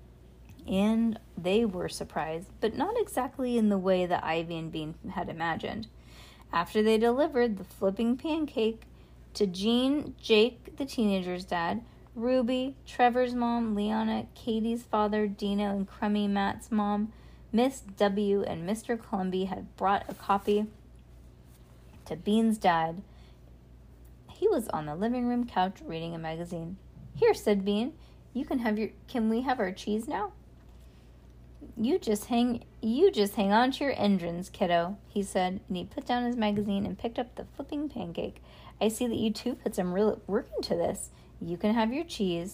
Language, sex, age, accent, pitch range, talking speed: English, female, 30-49, American, 170-235 Hz, 160 wpm